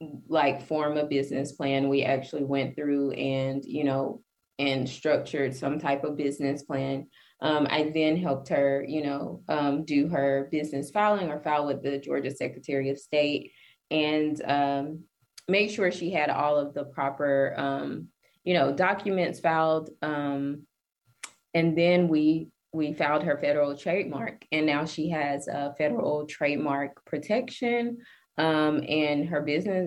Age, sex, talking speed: 20-39, female, 155 wpm